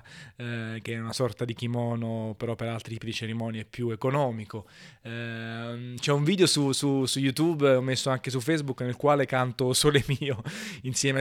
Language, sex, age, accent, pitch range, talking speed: Italian, male, 20-39, native, 115-140 Hz, 175 wpm